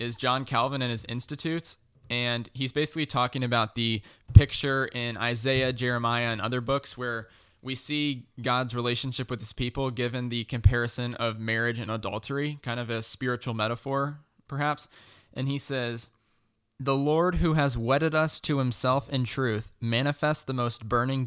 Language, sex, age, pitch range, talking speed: English, male, 20-39, 115-135 Hz, 160 wpm